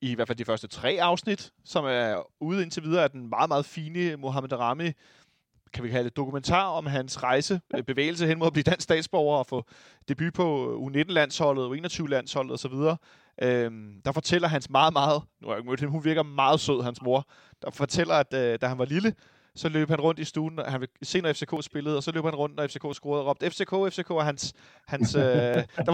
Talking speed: 215 wpm